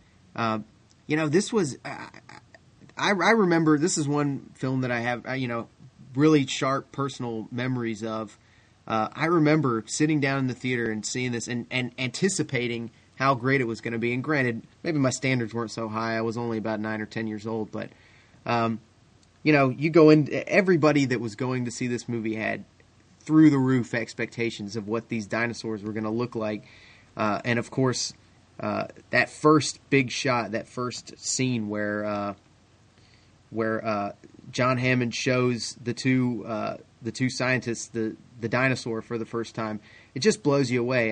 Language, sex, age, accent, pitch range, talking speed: English, male, 30-49, American, 110-130 Hz, 185 wpm